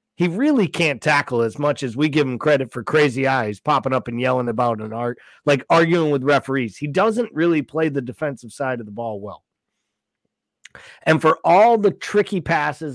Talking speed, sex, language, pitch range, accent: 195 wpm, male, English, 125-165 Hz, American